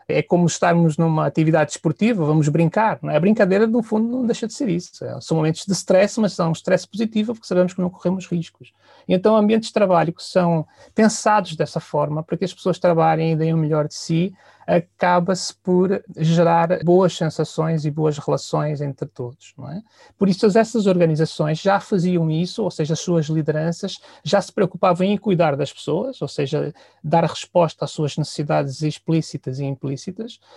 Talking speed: 185 wpm